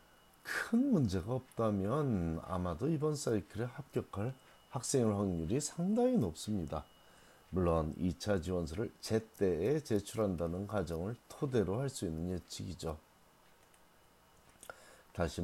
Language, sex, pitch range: Korean, male, 85-125 Hz